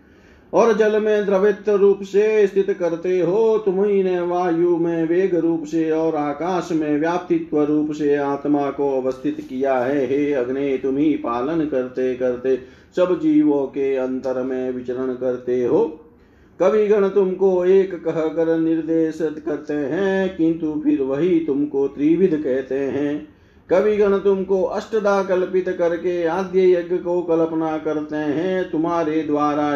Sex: male